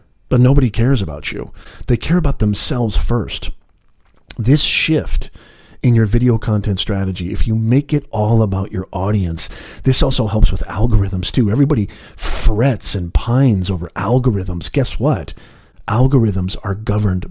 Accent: American